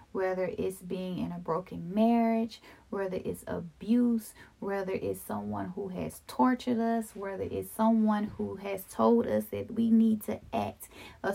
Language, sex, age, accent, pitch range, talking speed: English, female, 30-49, American, 180-230 Hz, 160 wpm